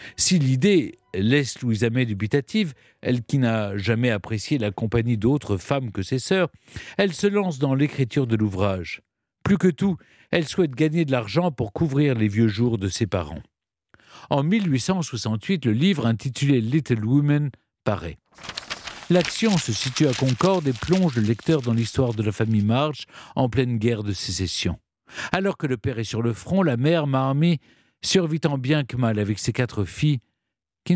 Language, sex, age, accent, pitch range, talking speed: French, male, 50-69, French, 115-165 Hz, 175 wpm